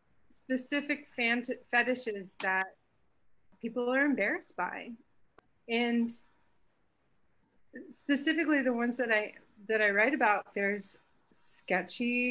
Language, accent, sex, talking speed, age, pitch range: English, American, female, 95 wpm, 30-49, 195-240 Hz